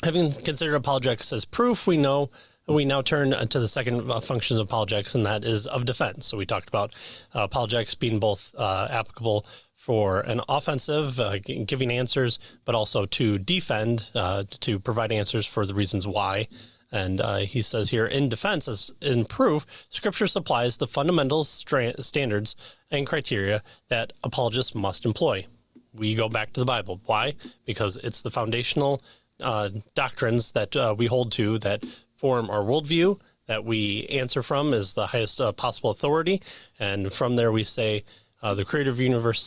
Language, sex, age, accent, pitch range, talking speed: English, male, 30-49, American, 105-135 Hz, 175 wpm